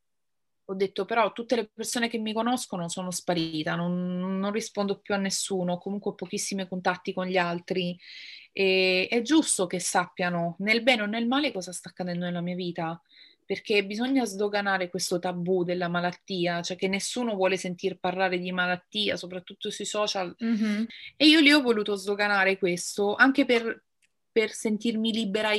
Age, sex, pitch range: 30-49, female, 185-220 Hz